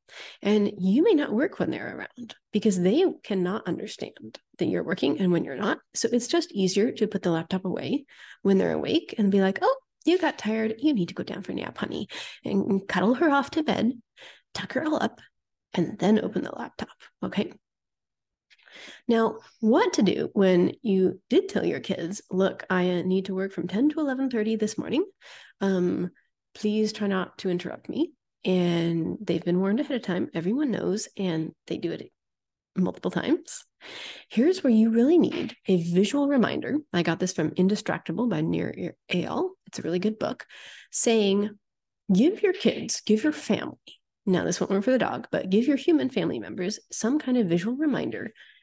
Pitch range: 185-260 Hz